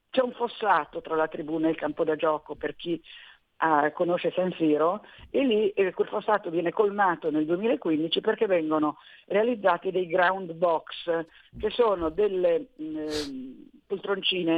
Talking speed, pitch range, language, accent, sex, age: 150 wpm, 160-200 Hz, Italian, native, female, 50-69